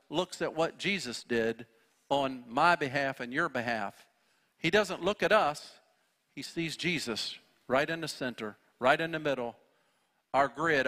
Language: English